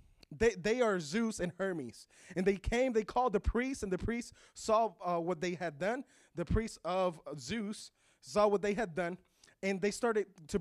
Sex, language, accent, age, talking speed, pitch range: male, English, American, 20-39, 200 wpm, 180-245 Hz